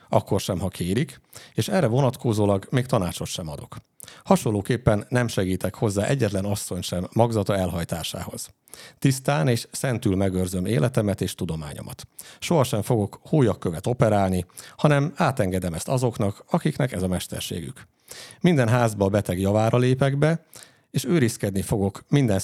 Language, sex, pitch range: Hungarian, male, 95-135 Hz